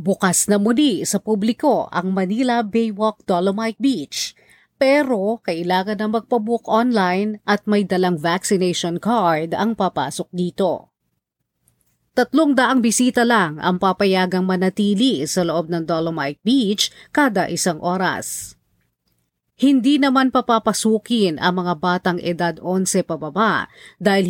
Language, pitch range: Filipino, 175-225 Hz